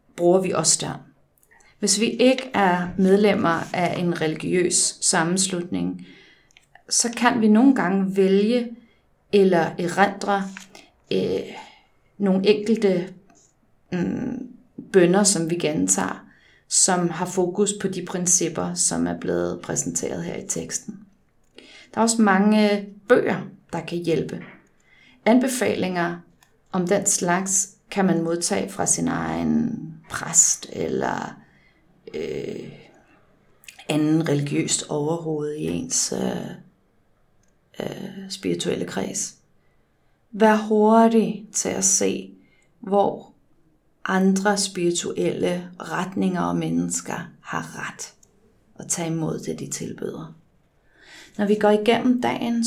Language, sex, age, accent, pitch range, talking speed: Danish, female, 30-49, native, 165-210 Hz, 105 wpm